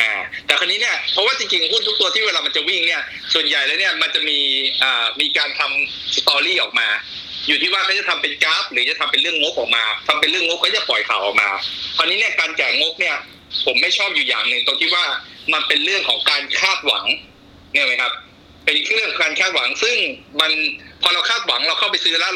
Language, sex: Thai, male